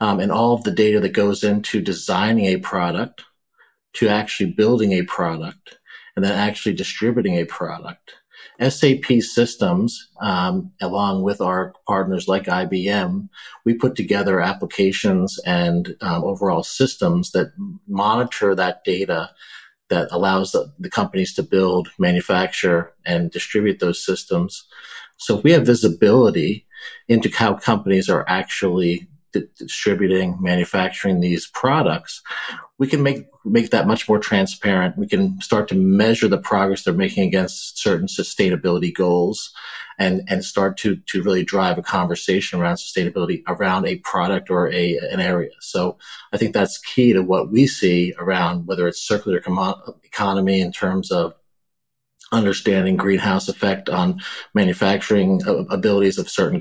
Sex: male